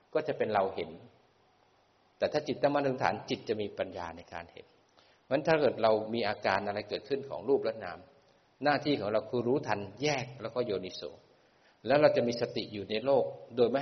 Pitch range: 115-135 Hz